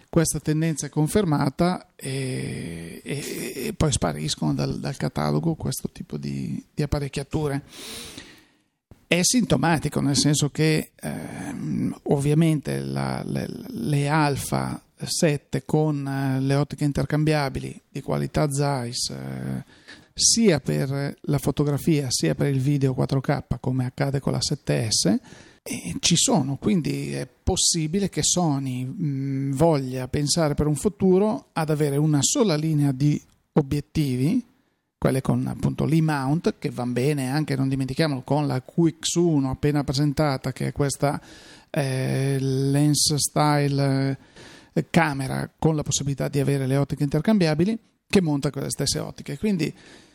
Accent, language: native, Italian